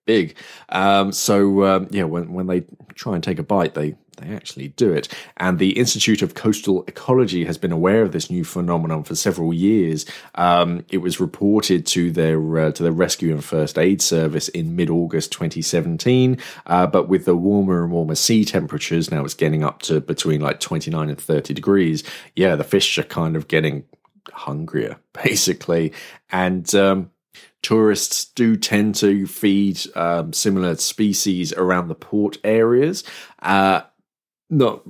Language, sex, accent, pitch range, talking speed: English, male, British, 85-100 Hz, 165 wpm